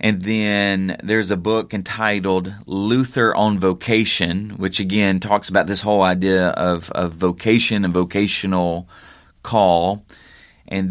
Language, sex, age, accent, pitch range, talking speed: English, male, 30-49, American, 90-105 Hz, 125 wpm